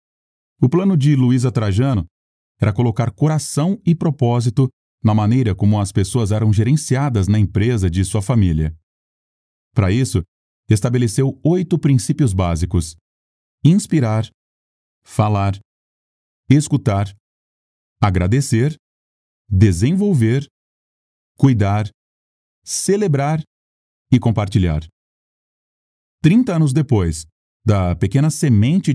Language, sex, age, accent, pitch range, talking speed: Portuguese, male, 40-59, Brazilian, 90-135 Hz, 90 wpm